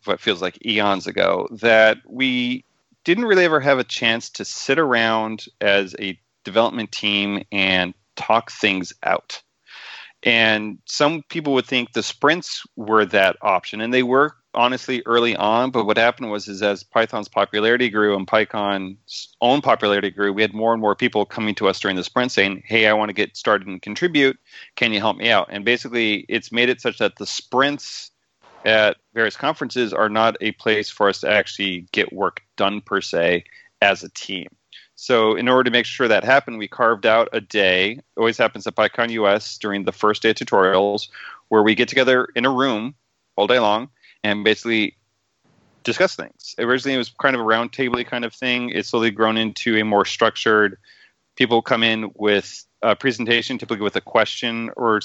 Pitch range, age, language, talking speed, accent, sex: 105-125 Hz, 30-49, English, 190 wpm, American, male